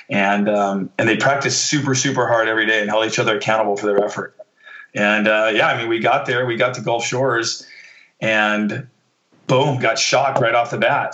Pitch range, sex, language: 110-130 Hz, male, English